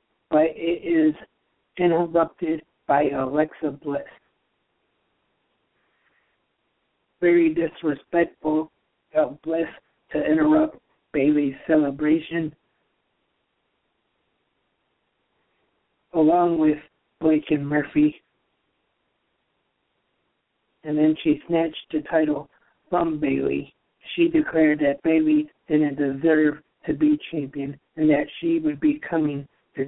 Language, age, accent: English, 60-79, American